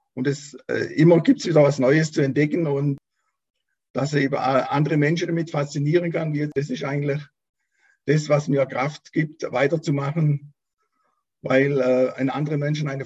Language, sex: German, male